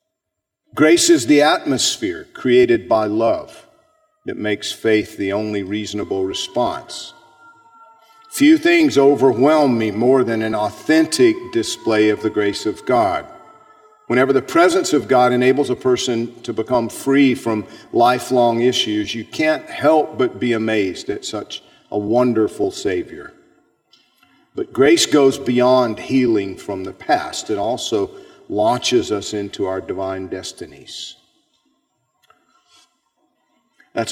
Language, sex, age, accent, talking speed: English, male, 50-69, American, 125 wpm